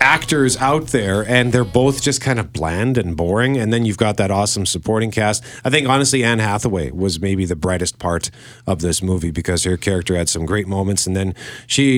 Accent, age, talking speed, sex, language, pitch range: American, 40-59, 215 wpm, male, English, 100-155 Hz